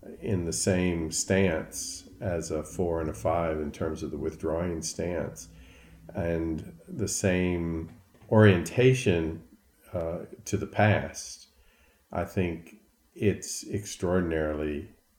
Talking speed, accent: 110 wpm, American